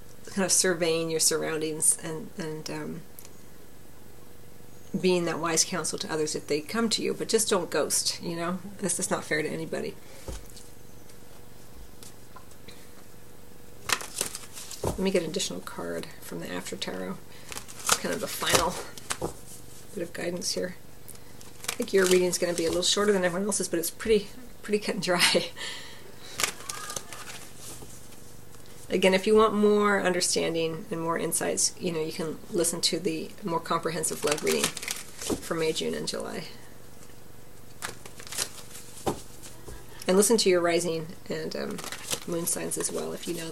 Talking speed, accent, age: 150 wpm, American, 40-59